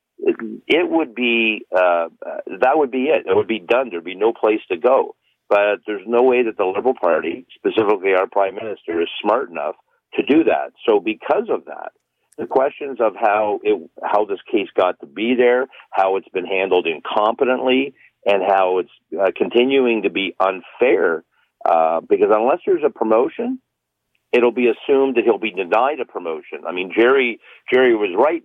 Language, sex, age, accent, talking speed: English, male, 50-69, American, 180 wpm